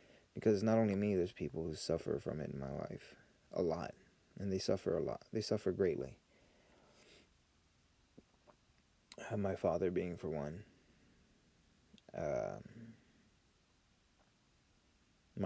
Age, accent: 20-39, American